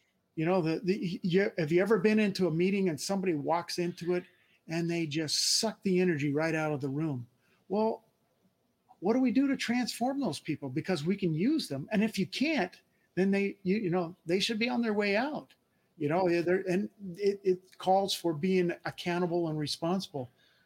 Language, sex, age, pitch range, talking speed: English, male, 50-69, 160-195 Hz, 205 wpm